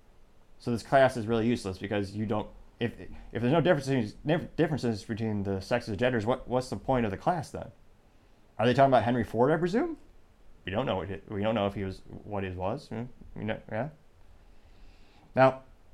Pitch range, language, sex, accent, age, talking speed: 105-140 Hz, English, male, American, 30-49, 205 wpm